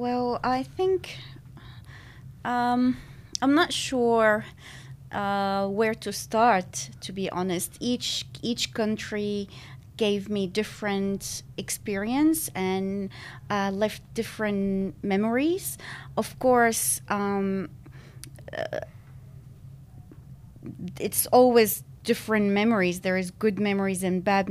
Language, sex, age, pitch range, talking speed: English, female, 30-49, 135-205 Hz, 100 wpm